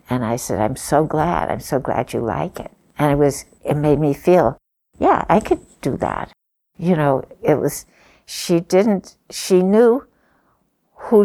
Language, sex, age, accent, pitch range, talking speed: English, female, 60-79, American, 145-175 Hz, 175 wpm